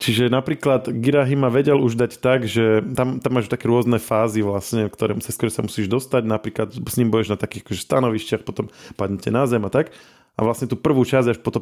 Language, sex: Slovak, male